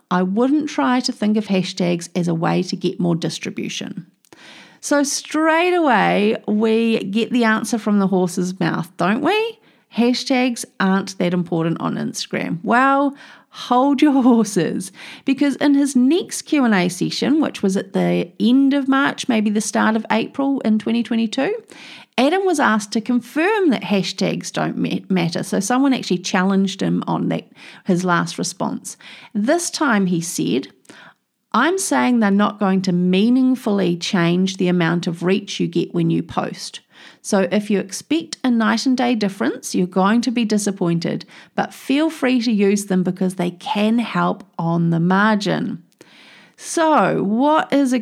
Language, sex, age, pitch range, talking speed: English, female, 40-59, 185-260 Hz, 165 wpm